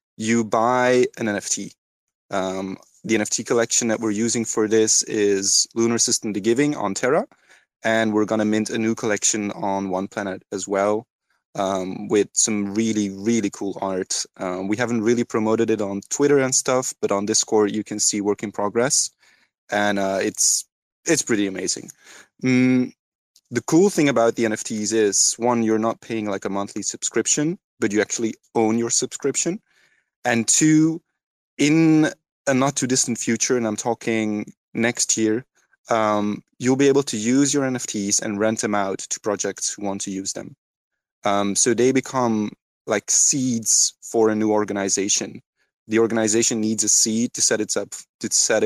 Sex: male